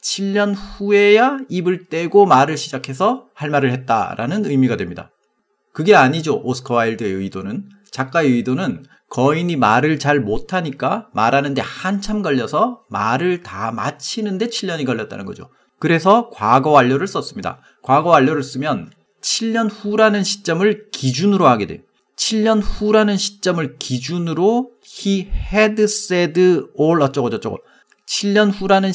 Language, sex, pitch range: Korean, male, 135-205 Hz